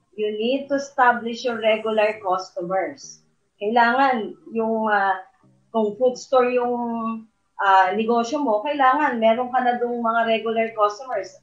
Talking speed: 130 wpm